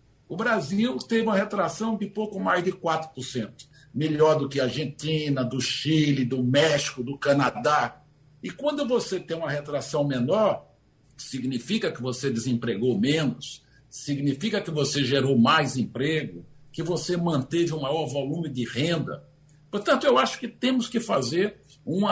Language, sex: Portuguese, male